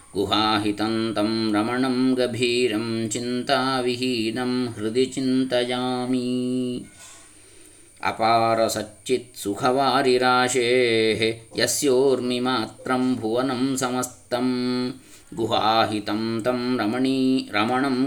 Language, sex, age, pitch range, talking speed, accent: Kannada, male, 20-39, 110-125 Hz, 40 wpm, native